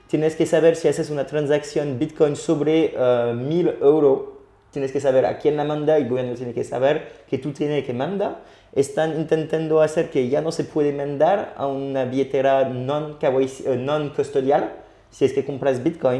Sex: male